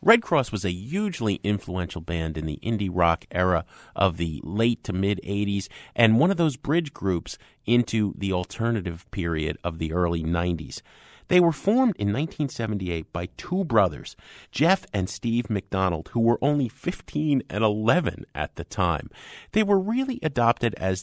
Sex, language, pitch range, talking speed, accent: male, English, 95-140 Hz, 165 wpm, American